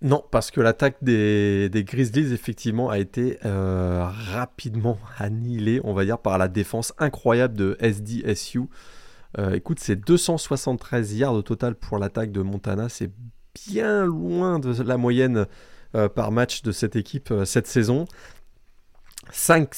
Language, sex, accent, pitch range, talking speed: French, male, French, 105-140 Hz, 150 wpm